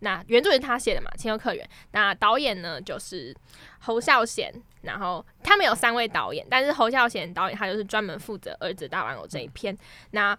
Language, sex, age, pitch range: Chinese, female, 10-29, 210-270 Hz